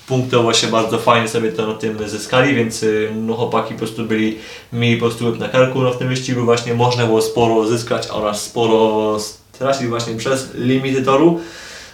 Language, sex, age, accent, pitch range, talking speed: Polish, male, 20-39, native, 110-125 Hz, 175 wpm